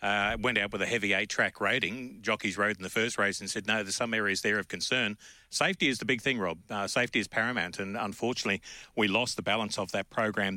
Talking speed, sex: 240 wpm, male